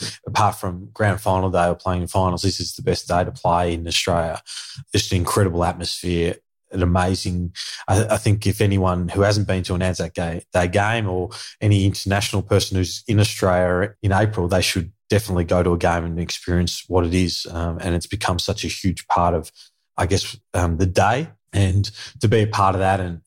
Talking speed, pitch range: 205 wpm, 85-100 Hz